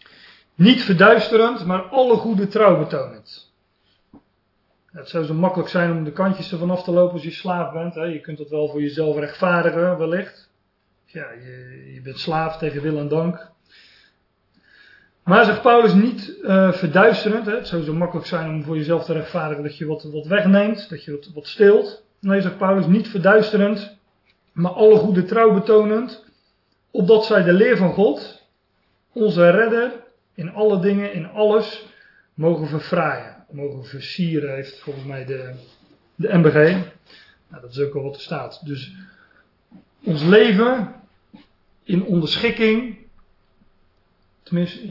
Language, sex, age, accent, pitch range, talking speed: Dutch, male, 40-59, Dutch, 155-200 Hz, 150 wpm